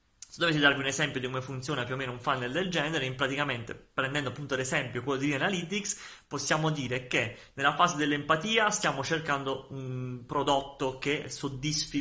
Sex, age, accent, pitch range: male, 30-49, native, 130-160 Hz